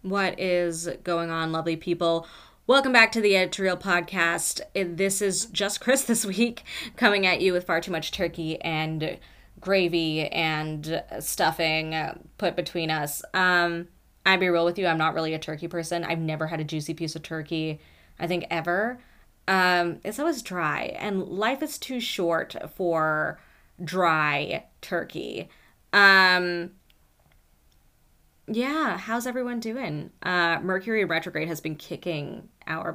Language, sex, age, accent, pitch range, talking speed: English, female, 20-39, American, 160-195 Hz, 150 wpm